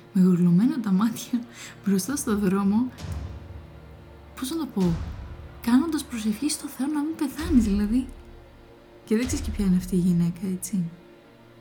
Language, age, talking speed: Greek, 20-39, 150 wpm